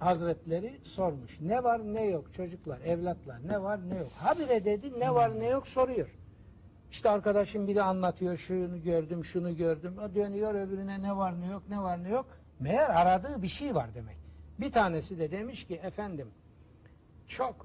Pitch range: 115-185 Hz